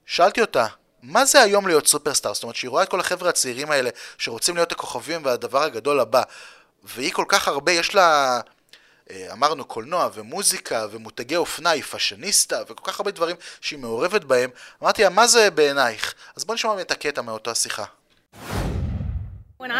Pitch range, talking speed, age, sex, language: 215-280 Hz, 160 wpm, 30-49, male, Hebrew